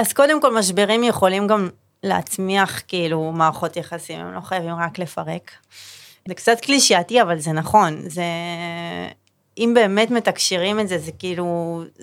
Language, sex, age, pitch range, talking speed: Hebrew, female, 30-49, 180-225 Hz, 140 wpm